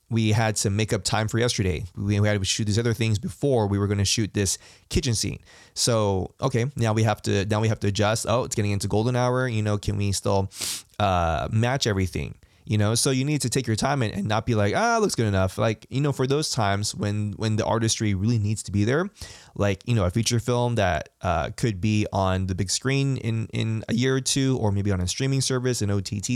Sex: male